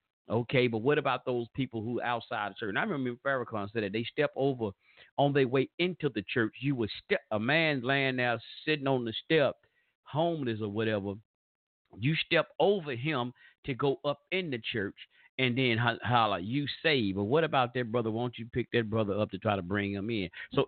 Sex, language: male, English